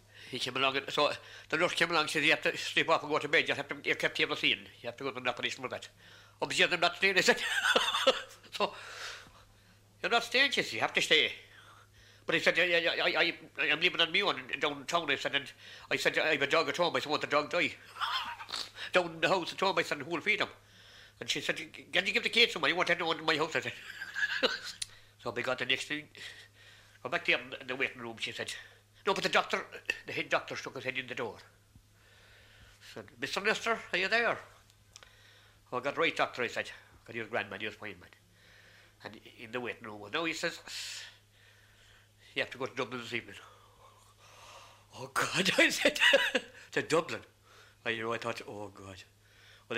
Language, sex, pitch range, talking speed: English, male, 105-160 Hz, 235 wpm